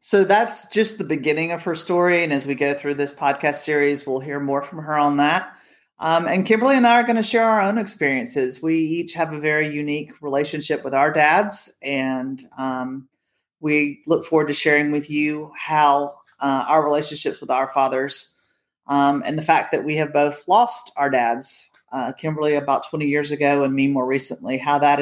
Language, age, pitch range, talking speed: English, 40-59, 140-170 Hz, 200 wpm